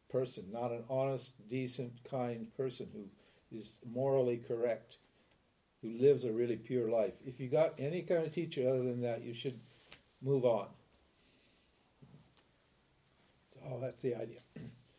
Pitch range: 120-135 Hz